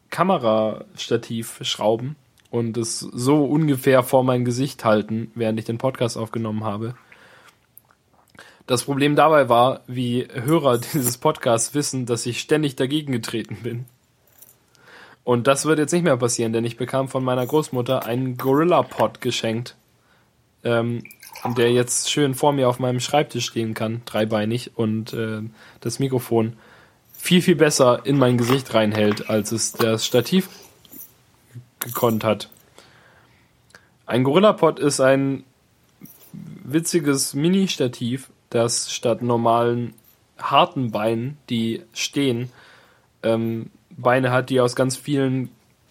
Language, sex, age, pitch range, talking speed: German, male, 20-39, 115-135 Hz, 125 wpm